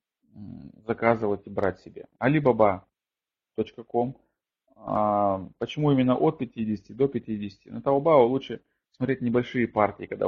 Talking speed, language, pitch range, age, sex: 110 wpm, Russian, 105-125 Hz, 20-39, male